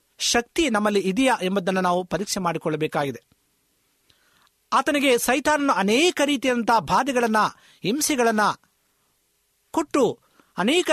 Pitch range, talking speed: 190-270 Hz, 80 wpm